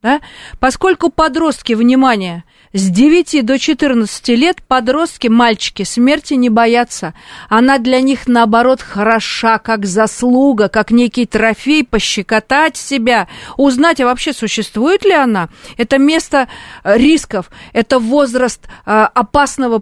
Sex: female